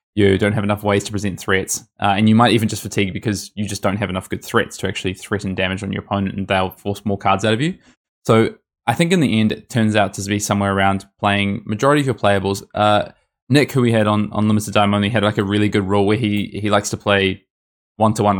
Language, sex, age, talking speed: English, male, 20-39, 260 wpm